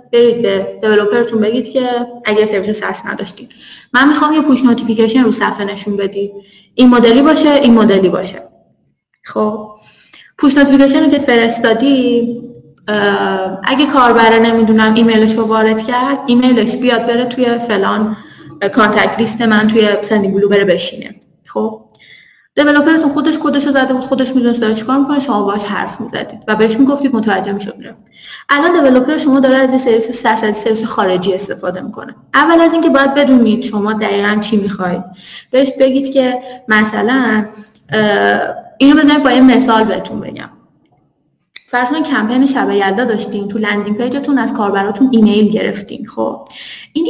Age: 20-39